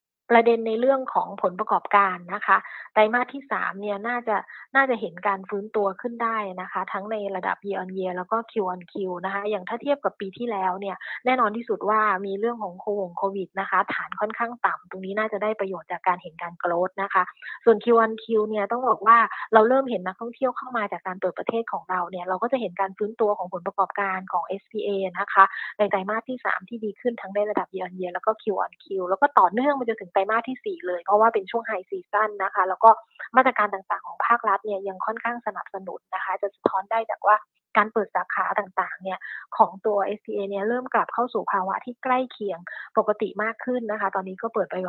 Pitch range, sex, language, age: 190-225 Hz, female, Thai, 20-39